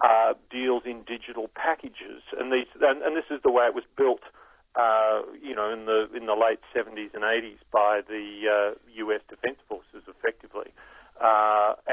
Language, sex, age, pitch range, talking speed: English, male, 50-69, 110-140 Hz, 175 wpm